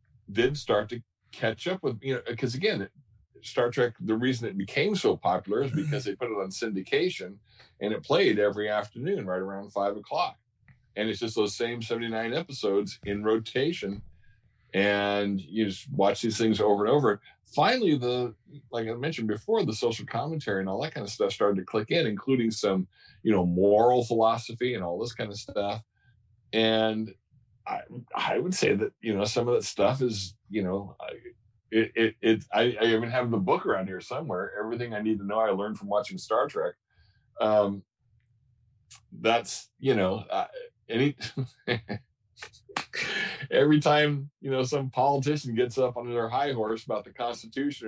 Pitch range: 105-130 Hz